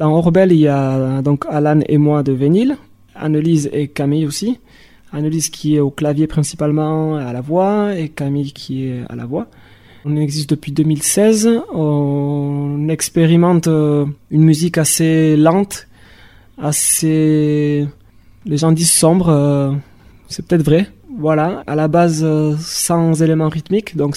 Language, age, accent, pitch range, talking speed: French, 20-39, French, 145-165 Hz, 140 wpm